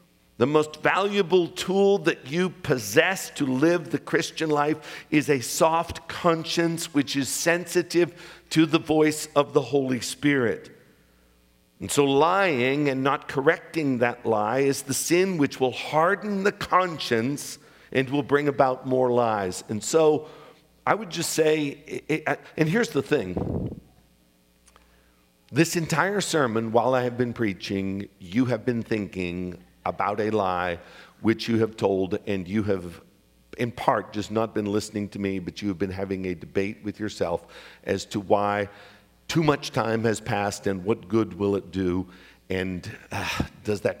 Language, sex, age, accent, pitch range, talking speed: English, male, 50-69, American, 95-150 Hz, 155 wpm